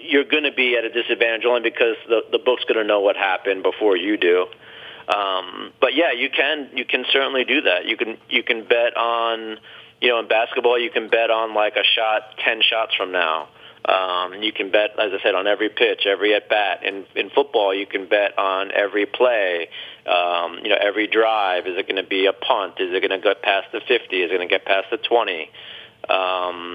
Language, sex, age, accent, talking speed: English, male, 30-49, American, 230 wpm